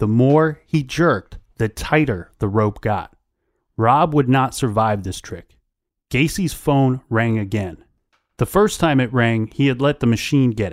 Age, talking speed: 30-49, 170 wpm